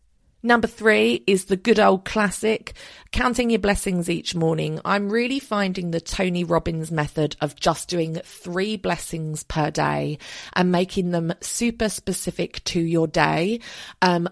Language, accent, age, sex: English, British, 30-49, female